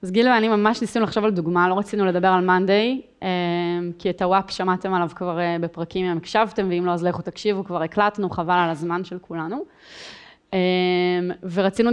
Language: Hebrew